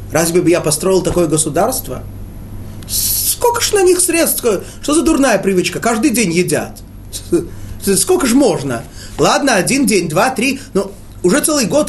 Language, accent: Russian, native